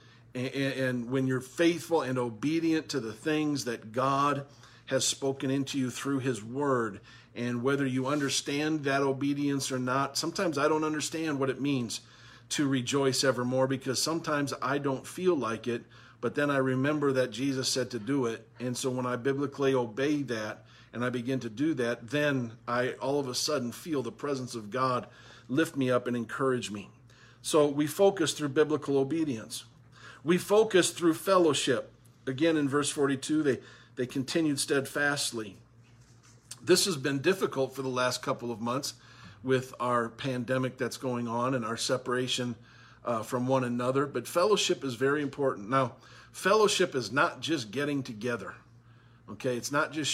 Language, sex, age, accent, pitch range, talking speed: English, male, 50-69, American, 120-145 Hz, 170 wpm